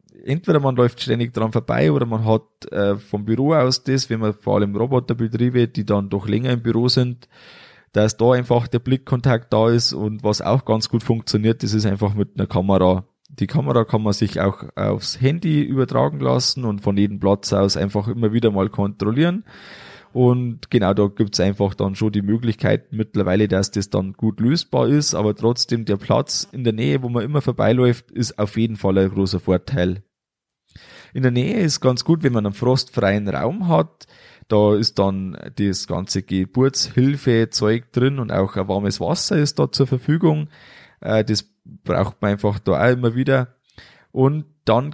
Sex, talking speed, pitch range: male, 185 wpm, 105-130 Hz